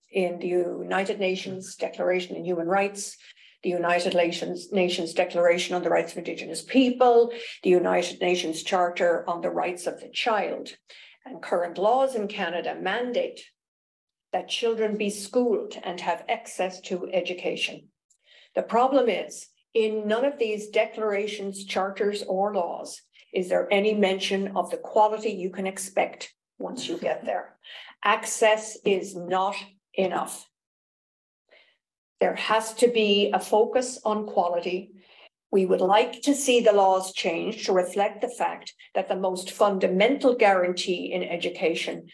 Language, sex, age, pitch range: English, female, 50-69, 185-235 Hz